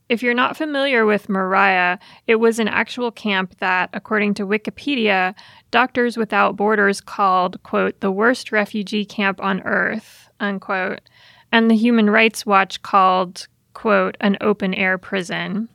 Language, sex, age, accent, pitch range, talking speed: English, female, 30-49, American, 195-230 Hz, 140 wpm